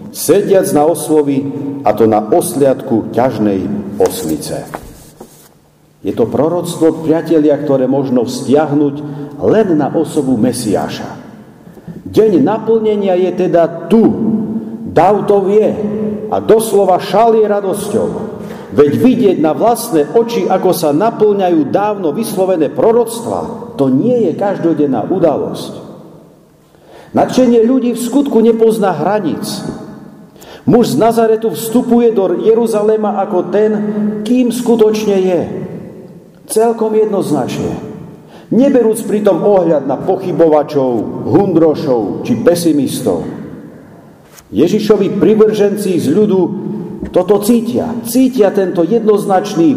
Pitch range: 165-225 Hz